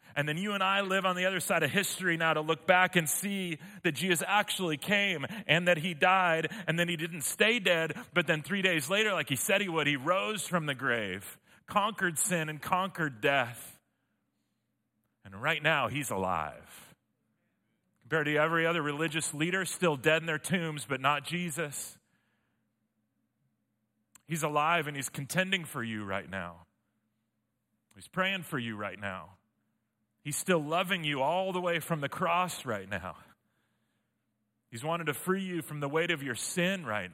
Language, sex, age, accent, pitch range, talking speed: English, male, 40-59, American, 110-175 Hz, 180 wpm